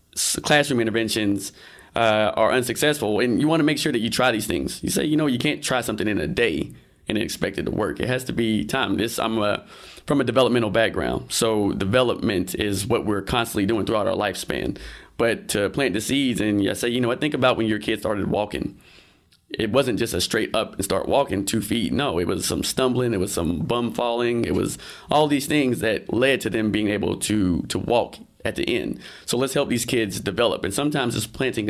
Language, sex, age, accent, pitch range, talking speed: English, male, 20-39, American, 105-125 Hz, 230 wpm